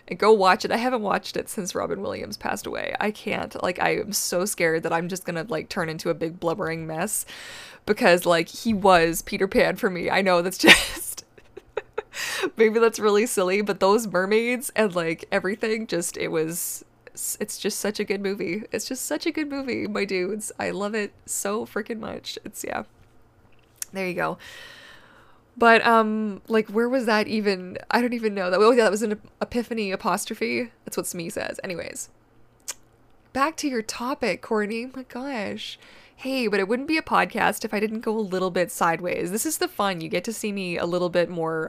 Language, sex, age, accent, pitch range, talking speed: English, female, 20-39, American, 175-230 Hz, 205 wpm